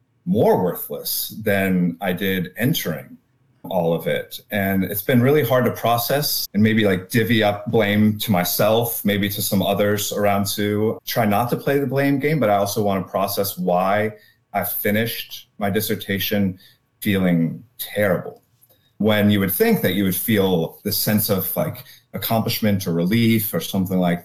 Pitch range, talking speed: 100-120 Hz, 170 wpm